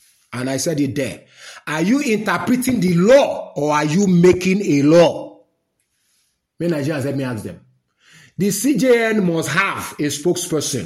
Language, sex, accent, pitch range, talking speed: English, male, Nigerian, 150-200 Hz, 155 wpm